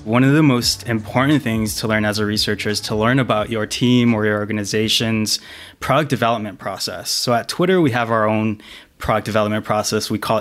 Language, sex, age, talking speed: English, male, 20-39, 200 wpm